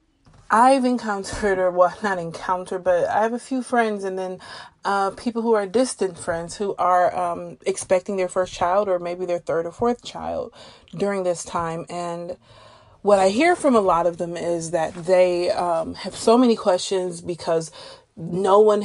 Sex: female